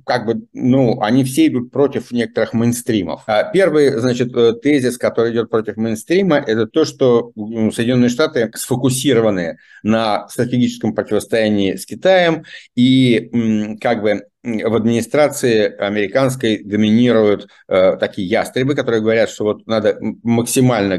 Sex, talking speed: male, 120 wpm